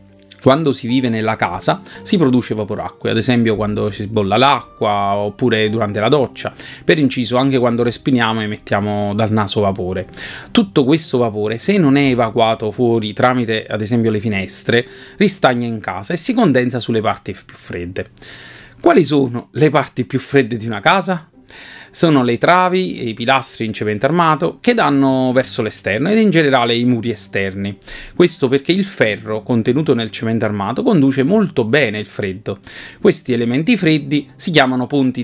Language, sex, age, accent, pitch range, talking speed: Italian, male, 30-49, native, 105-140 Hz, 165 wpm